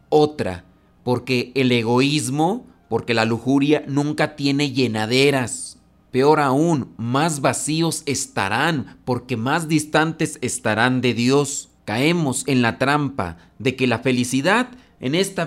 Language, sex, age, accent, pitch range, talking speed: Spanish, male, 40-59, Mexican, 125-155 Hz, 120 wpm